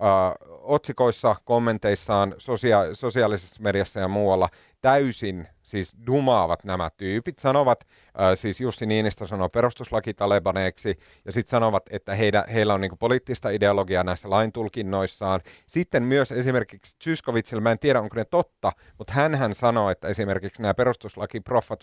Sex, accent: male, native